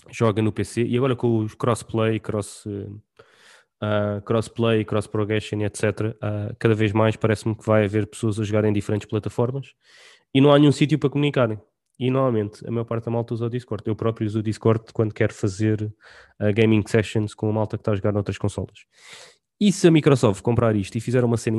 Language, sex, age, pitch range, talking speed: English, male, 20-39, 105-120 Hz, 215 wpm